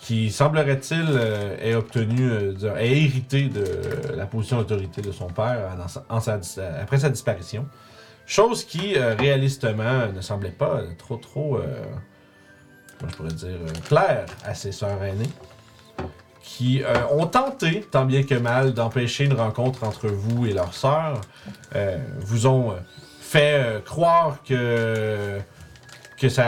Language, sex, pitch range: French, male, 105-135 Hz